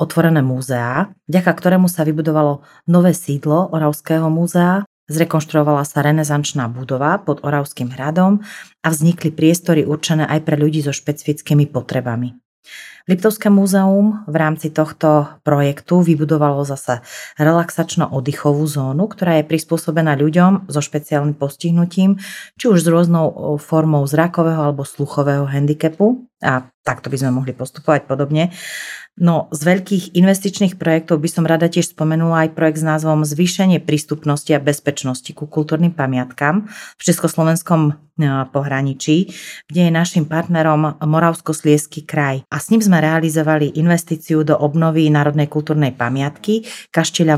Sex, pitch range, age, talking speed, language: female, 145-165 Hz, 30-49, 130 wpm, Slovak